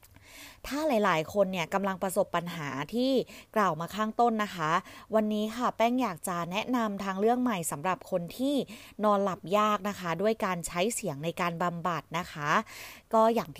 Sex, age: female, 20-39